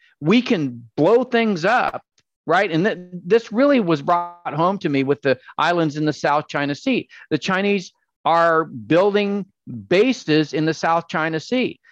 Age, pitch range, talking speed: 50-69, 160-225 Hz, 160 wpm